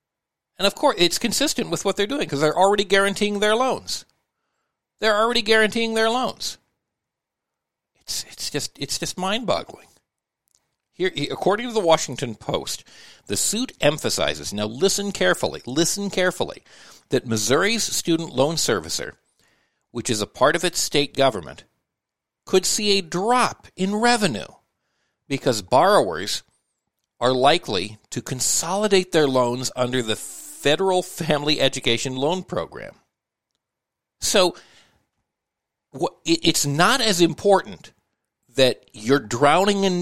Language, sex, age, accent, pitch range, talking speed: English, male, 50-69, American, 135-205 Hz, 125 wpm